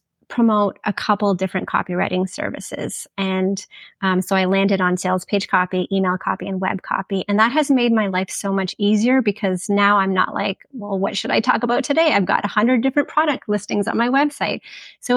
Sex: female